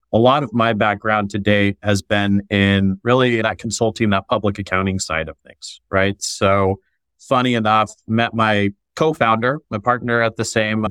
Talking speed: 165 wpm